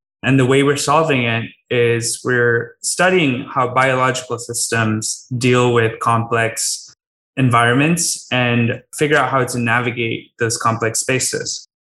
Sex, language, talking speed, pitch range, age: male, English, 125 wpm, 120-140 Hz, 20-39